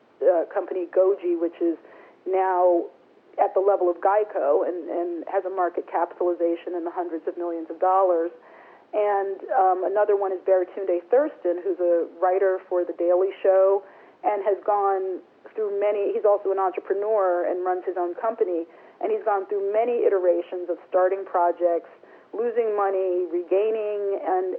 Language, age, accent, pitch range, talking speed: English, 40-59, American, 175-210 Hz, 160 wpm